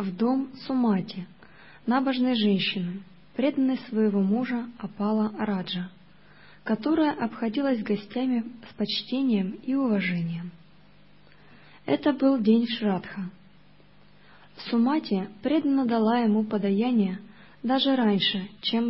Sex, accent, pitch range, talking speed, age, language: female, native, 190-245 Hz, 90 wpm, 20-39, Russian